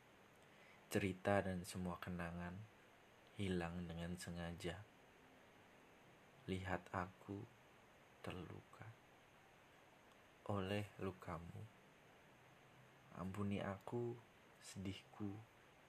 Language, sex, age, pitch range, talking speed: Indonesian, male, 20-39, 90-105 Hz, 55 wpm